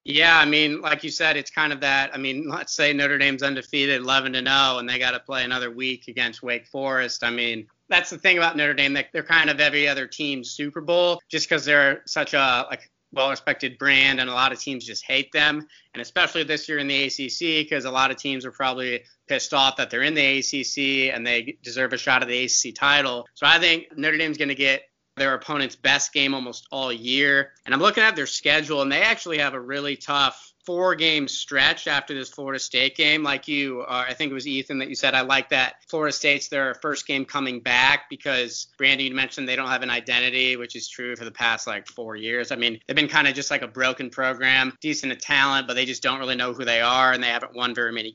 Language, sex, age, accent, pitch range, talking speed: English, male, 30-49, American, 130-150 Hz, 240 wpm